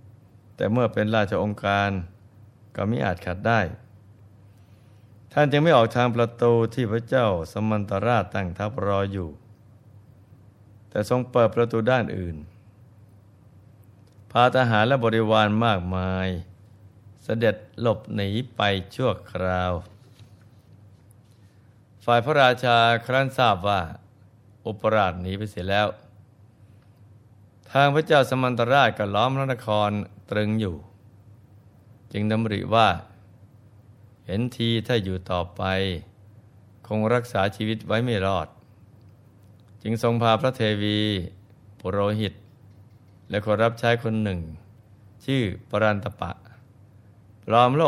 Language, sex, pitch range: Thai, male, 100-115 Hz